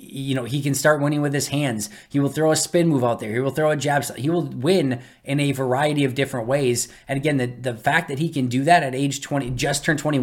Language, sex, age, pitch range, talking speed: English, male, 20-39, 125-145 Hz, 275 wpm